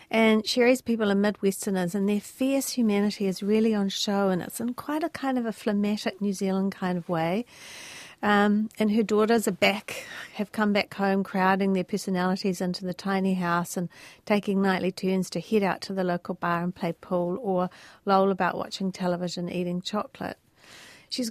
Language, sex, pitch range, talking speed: English, female, 180-210 Hz, 185 wpm